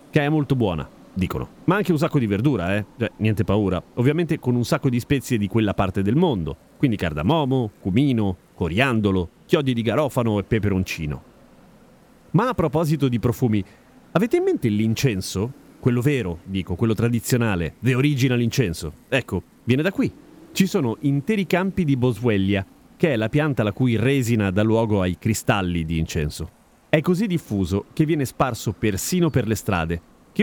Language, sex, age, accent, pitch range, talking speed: Italian, male, 30-49, native, 100-150 Hz, 170 wpm